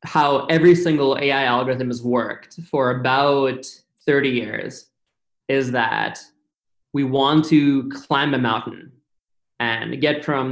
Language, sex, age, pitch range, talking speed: English, male, 20-39, 130-150 Hz, 125 wpm